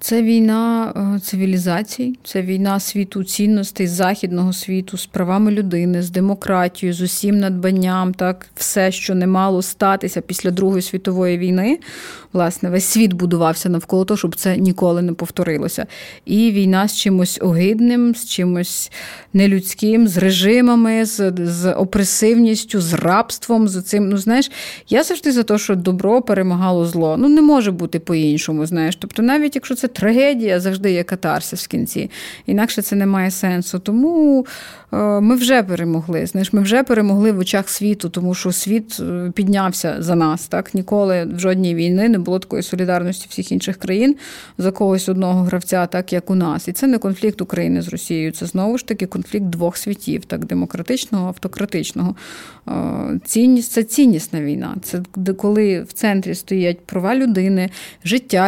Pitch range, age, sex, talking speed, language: 180-215 Hz, 30-49, female, 155 wpm, Ukrainian